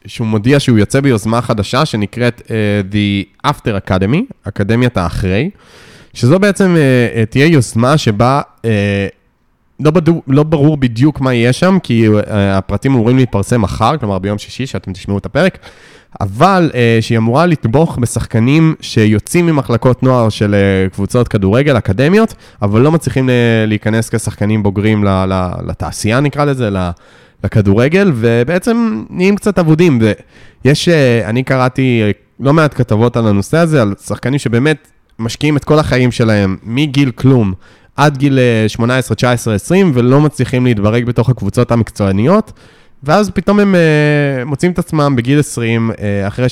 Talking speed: 140 wpm